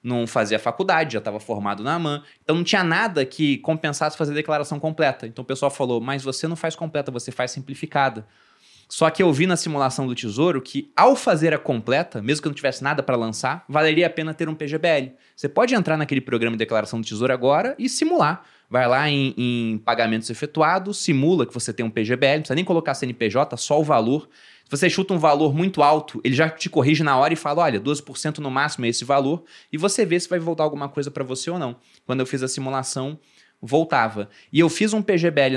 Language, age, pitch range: Portuguese, 20-39, 120-165 Hz